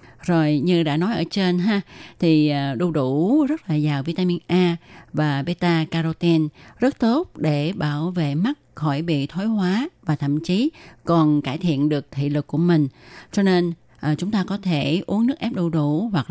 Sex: female